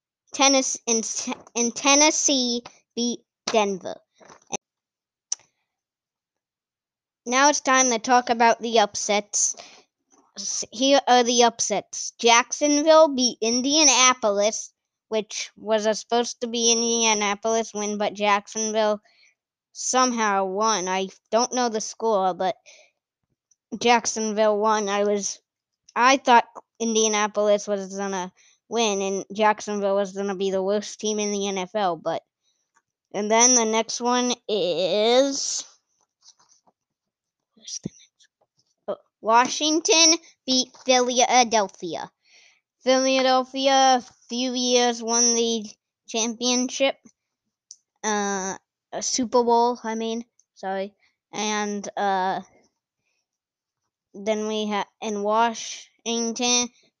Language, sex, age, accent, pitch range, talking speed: English, female, 20-39, American, 210-250 Hz, 100 wpm